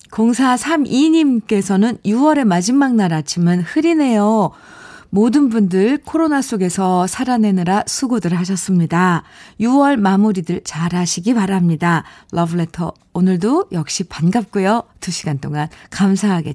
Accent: native